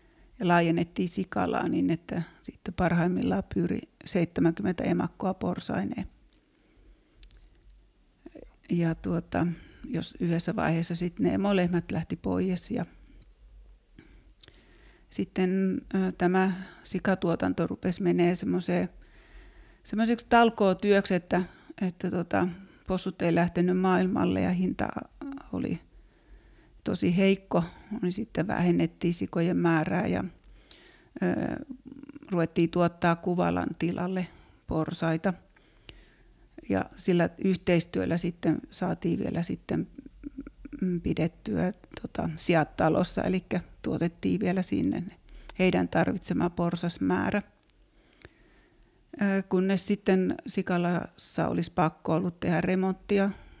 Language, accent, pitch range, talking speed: Finnish, native, 170-195 Hz, 85 wpm